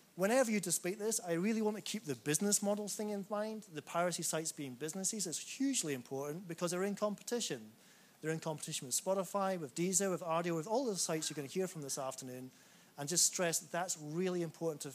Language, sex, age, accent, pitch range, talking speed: Dutch, male, 30-49, British, 140-175 Hz, 220 wpm